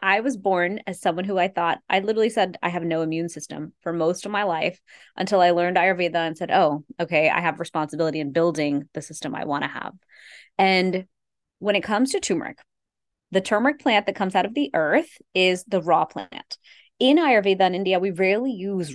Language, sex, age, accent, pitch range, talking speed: English, female, 20-39, American, 170-215 Hz, 210 wpm